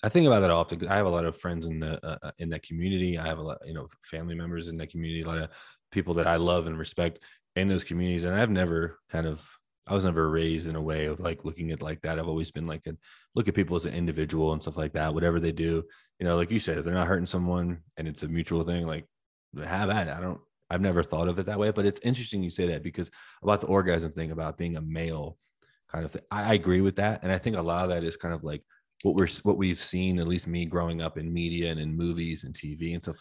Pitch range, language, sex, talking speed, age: 80-90 Hz, English, male, 285 wpm, 20-39